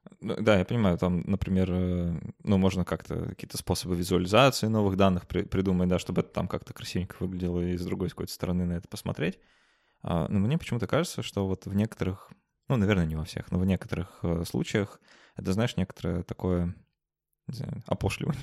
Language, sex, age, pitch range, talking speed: Russian, male, 20-39, 90-100 Hz, 175 wpm